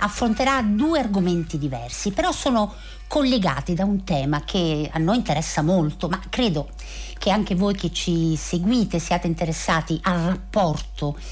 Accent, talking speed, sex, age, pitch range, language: native, 145 wpm, female, 50-69, 160-205 Hz, Italian